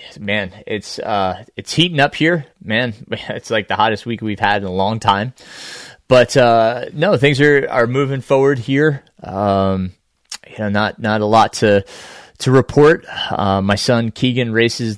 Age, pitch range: 20-39, 100-125 Hz